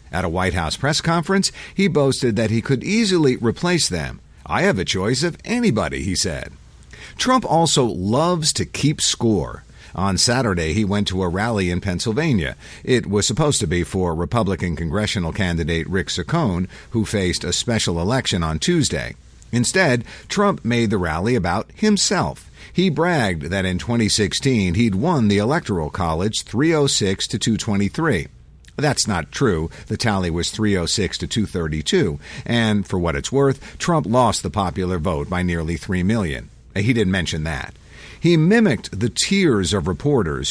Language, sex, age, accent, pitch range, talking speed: English, male, 50-69, American, 90-145 Hz, 160 wpm